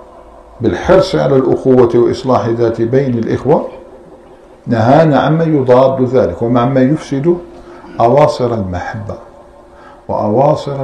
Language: Arabic